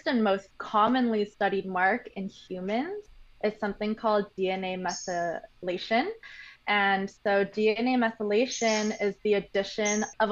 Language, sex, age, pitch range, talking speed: English, female, 20-39, 195-240 Hz, 115 wpm